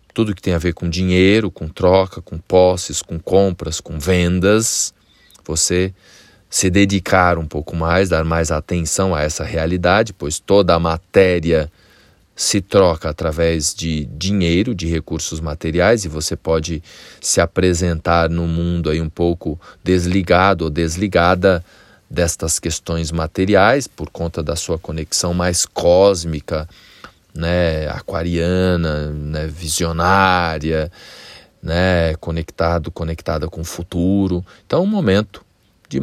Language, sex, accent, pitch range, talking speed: Portuguese, male, Brazilian, 80-95 Hz, 125 wpm